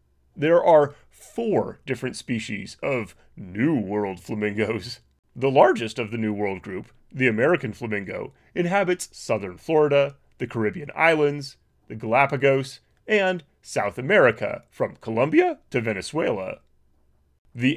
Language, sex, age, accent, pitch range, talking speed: English, male, 30-49, American, 115-170 Hz, 120 wpm